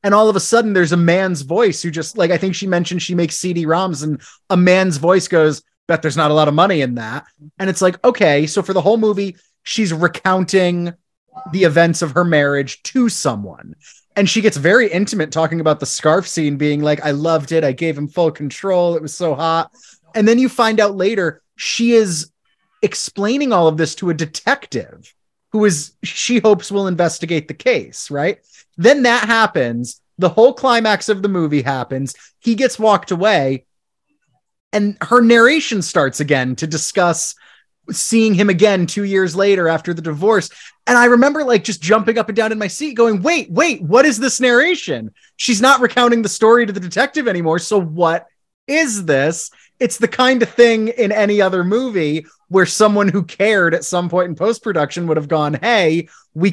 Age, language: 30-49, English